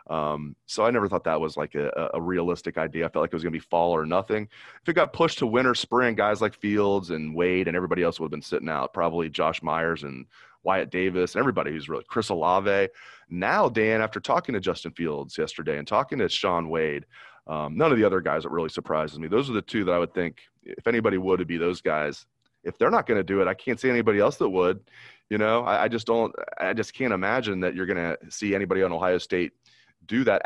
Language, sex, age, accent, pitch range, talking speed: English, male, 30-49, American, 85-110 Hz, 255 wpm